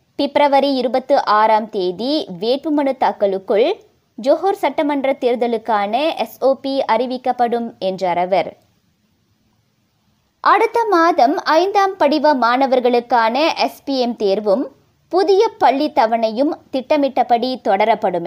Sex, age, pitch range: male, 20-39, 220-305 Hz